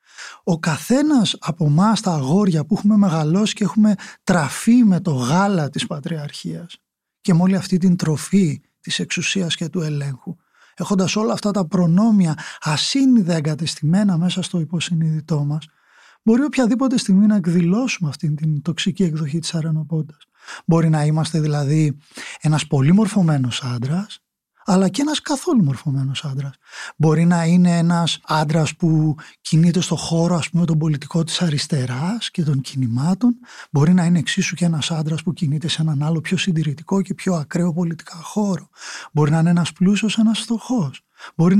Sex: male